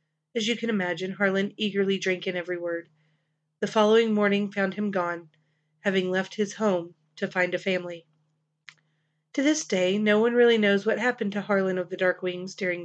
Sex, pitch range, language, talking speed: female, 175-210 Hz, English, 185 wpm